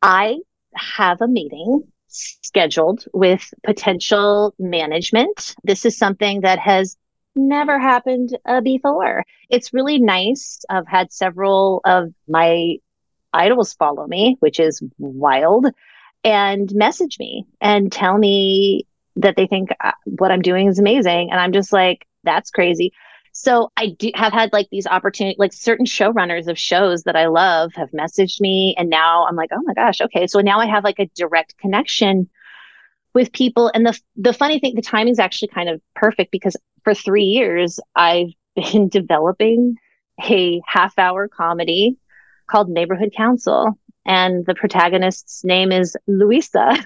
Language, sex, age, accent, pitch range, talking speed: English, female, 30-49, American, 185-235 Hz, 155 wpm